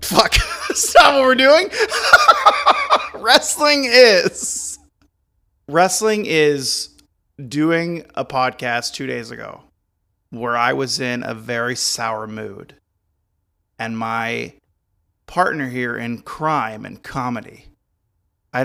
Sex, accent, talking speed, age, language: male, American, 105 wpm, 30-49, English